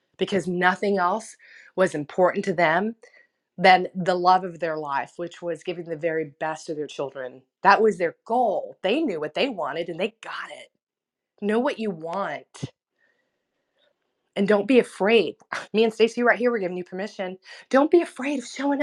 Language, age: English, 30-49